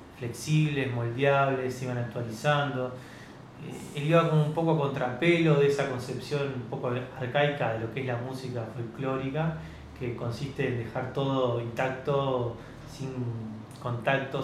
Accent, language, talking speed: Argentinian, Spanish, 140 wpm